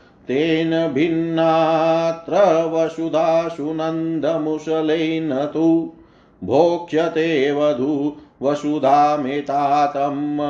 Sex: male